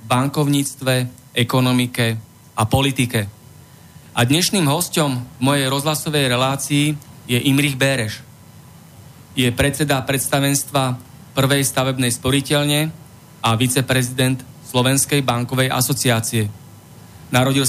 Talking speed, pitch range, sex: 85 wpm, 125-145 Hz, male